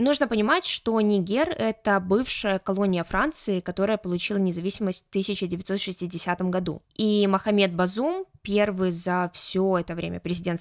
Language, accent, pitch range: Russian, native, 185-220 Hz